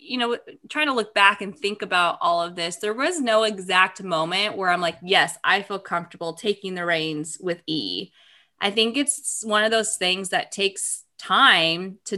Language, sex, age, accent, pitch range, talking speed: English, female, 20-39, American, 170-205 Hz, 195 wpm